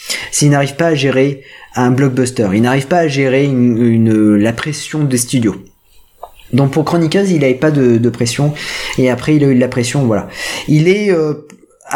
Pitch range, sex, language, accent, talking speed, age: 120-160 Hz, male, French, French, 195 wpm, 20-39